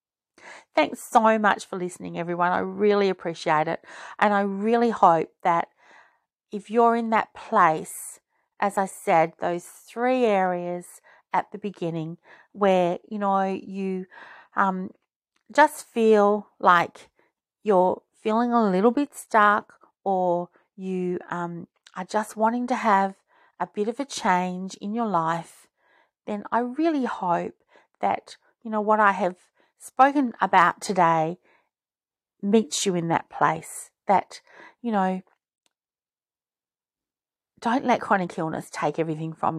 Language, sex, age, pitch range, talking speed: English, female, 40-59, 180-225 Hz, 130 wpm